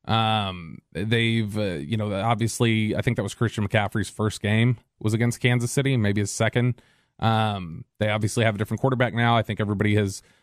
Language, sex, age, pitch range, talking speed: English, male, 30-49, 105-125 Hz, 190 wpm